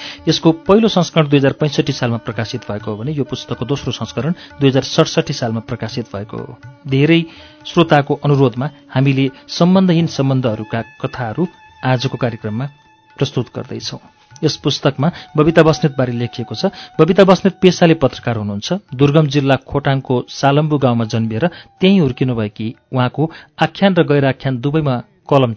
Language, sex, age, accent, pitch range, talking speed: English, male, 40-59, Indian, 120-160 Hz, 125 wpm